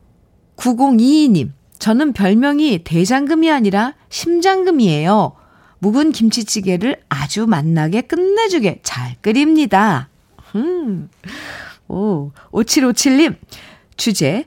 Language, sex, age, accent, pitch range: Korean, female, 50-69, native, 200-300 Hz